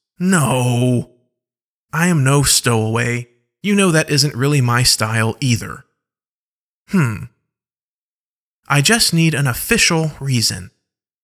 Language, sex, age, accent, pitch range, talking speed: English, male, 30-49, American, 120-180 Hz, 105 wpm